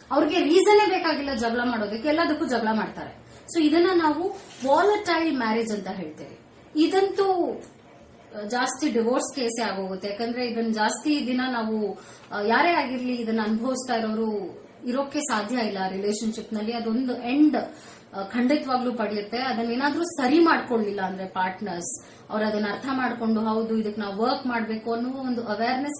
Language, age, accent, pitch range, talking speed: Kannada, 20-39, native, 220-295 Hz, 125 wpm